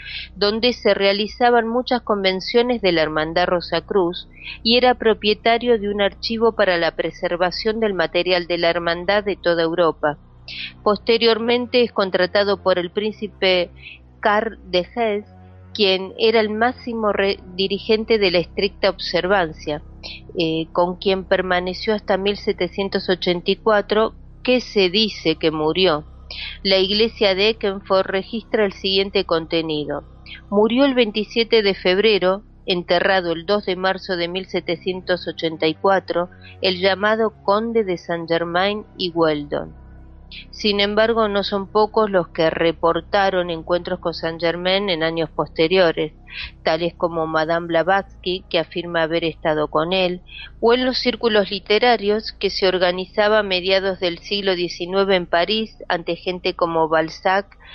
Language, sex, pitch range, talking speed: Spanish, female, 170-210 Hz, 135 wpm